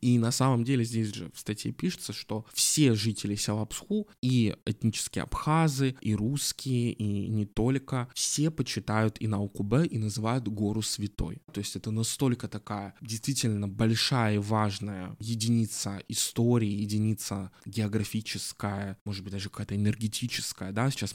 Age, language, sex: 20-39, Russian, male